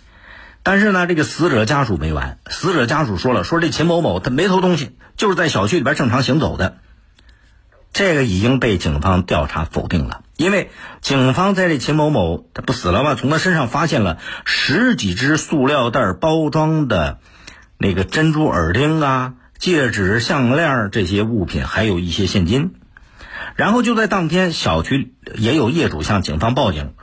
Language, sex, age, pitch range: Chinese, male, 50-69, 90-150 Hz